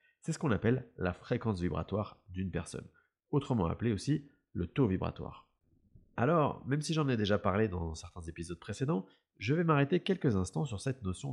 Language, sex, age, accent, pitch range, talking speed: French, male, 30-49, French, 90-130 Hz, 180 wpm